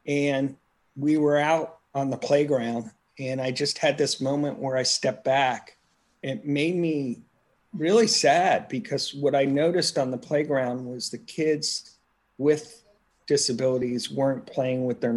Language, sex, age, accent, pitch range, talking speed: English, male, 40-59, American, 130-150 Hz, 150 wpm